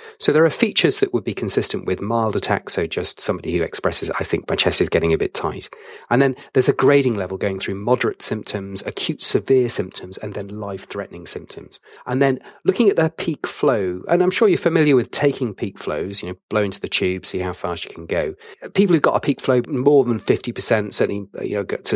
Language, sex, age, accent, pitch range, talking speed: English, male, 30-49, British, 105-140 Hz, 225 wpm